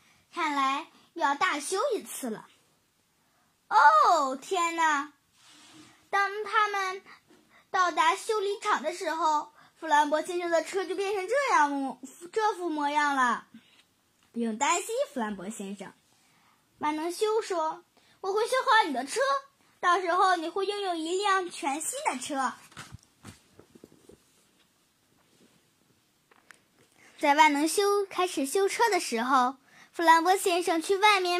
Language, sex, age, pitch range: Chinese, female, 10-29, 295-390 Hz